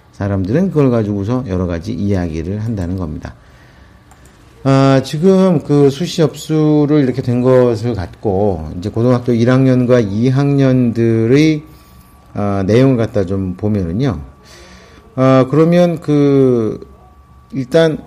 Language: English